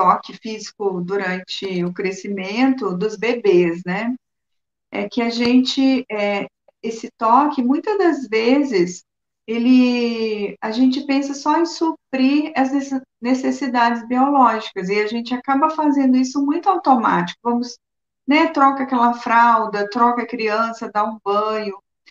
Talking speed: 120 wpm